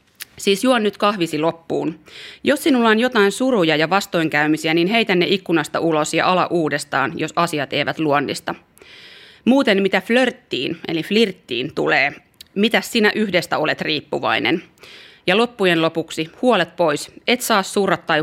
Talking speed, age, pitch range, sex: 145 wpm, 30-49, 160-210 Hz, female